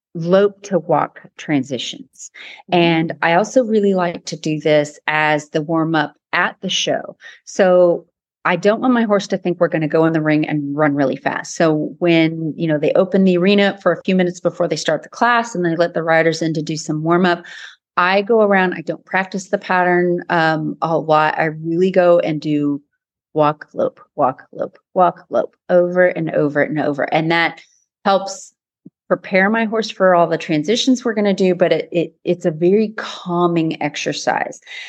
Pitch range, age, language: 160-200 Hz, 30-49, English